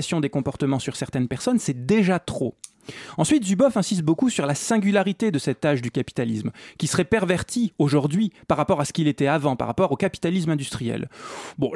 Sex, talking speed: male, 190 wpm